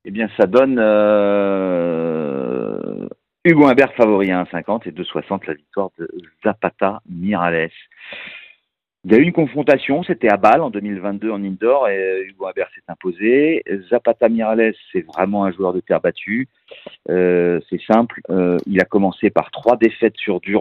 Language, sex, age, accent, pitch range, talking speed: French, male, 50-69, French, 90-120 Hz, 160 wpm